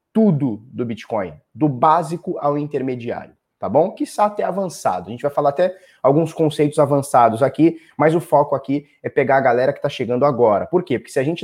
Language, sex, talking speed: Portuguese, male, 210 wpm